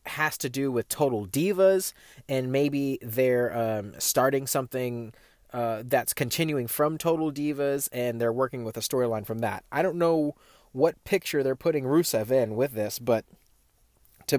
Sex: male